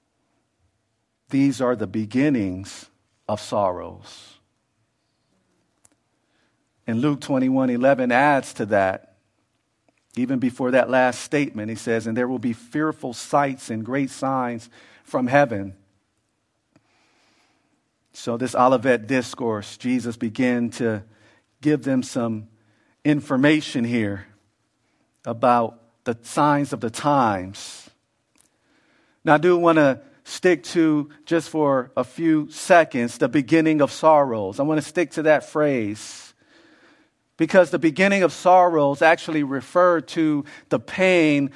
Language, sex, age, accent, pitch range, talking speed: English, male, 50-69, American, 115-155 Hz, 120 wpm